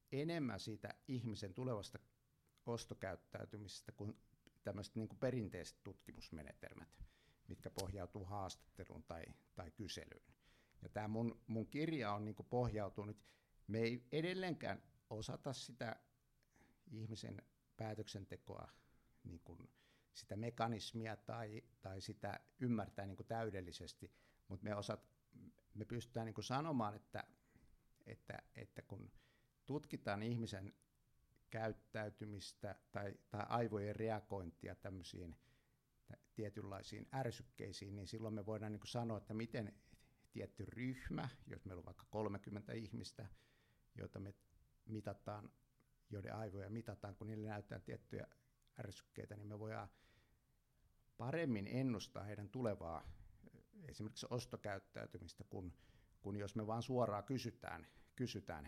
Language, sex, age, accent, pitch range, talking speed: Finnish, male, 60-79, native, 100-120 Hz, 105 wpm